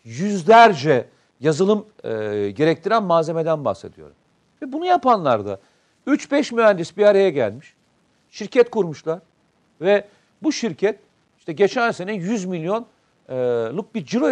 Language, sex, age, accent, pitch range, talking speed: Turkish, male, 50-69, native, 165-225 Hz, 115 wpm